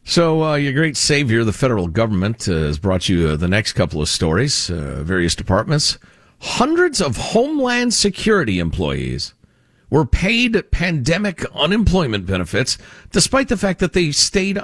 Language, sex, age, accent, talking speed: English, male, 50-69, American, 150 wpm